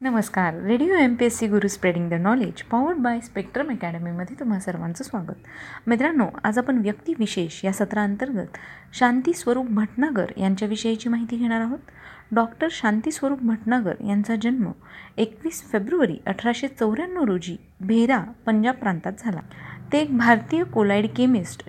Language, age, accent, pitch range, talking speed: Marathi, 30-49, native, 200-250 Hz, 130 wpm